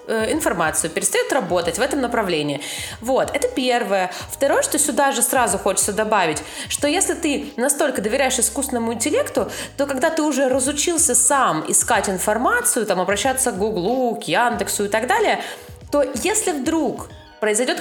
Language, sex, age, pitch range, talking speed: Russian, female, 20-39, 215-295 Hz, 150 wpm